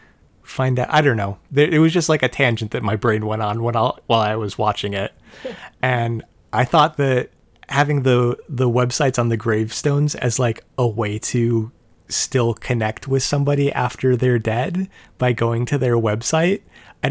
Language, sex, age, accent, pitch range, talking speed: English, male, 30-49, American, 110-130 Hz, 180 wpm